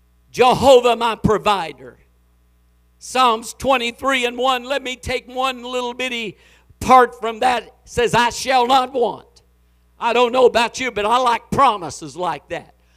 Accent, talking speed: American, 155 wpm